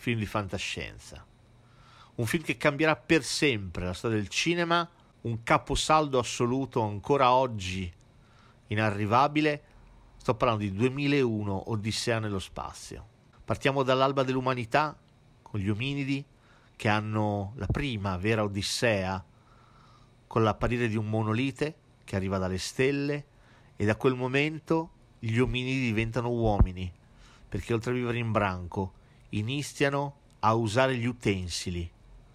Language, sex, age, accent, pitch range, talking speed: Italian, male, 40-59, native, 105-130 Hz, 120 wpm